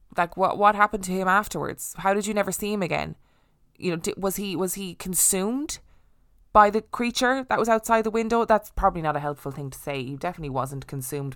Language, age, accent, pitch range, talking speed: English, 20-39, Irish, 145-195 Hz, 220 wpm